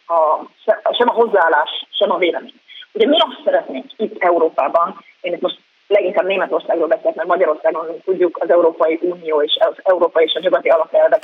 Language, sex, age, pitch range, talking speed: Hungarian, female, 30-49, 170-235 Hz, 170 wpm